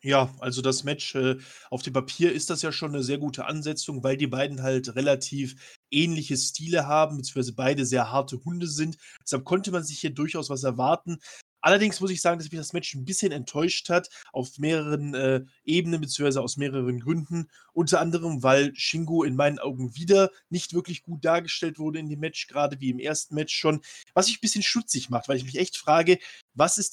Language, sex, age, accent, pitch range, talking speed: German, male, 20-39, German, 140-175 Hz, 205 wpm